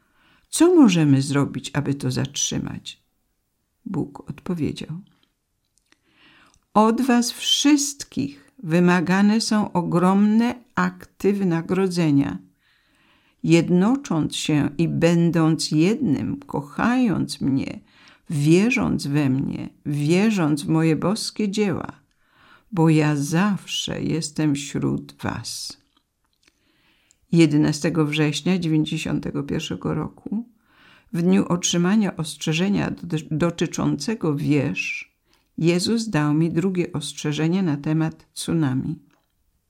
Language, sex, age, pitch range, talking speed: English, female, 50-69, 155-210 Hz, 85 wpm